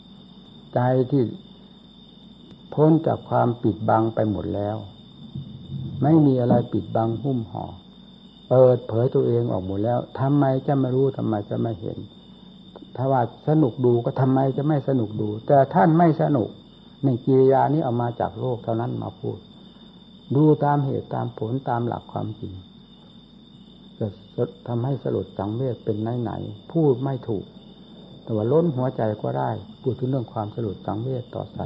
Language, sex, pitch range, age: Thai, male, 110-150 Hz, 60-79